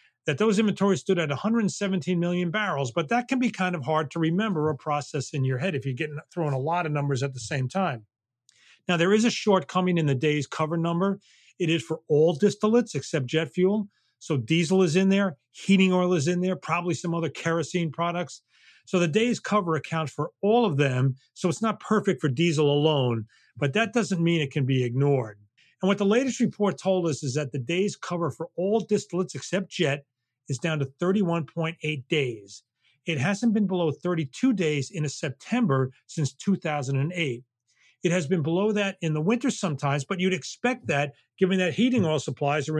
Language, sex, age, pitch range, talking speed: English, male, 40-59, 140-190 Hz, 200 wpm